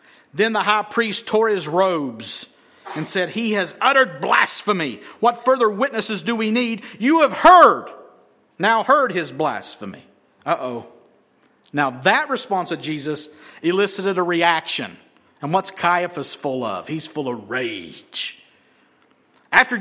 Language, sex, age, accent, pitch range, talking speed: English, male, 50-69, American, 145-220 Hz, 135 wpm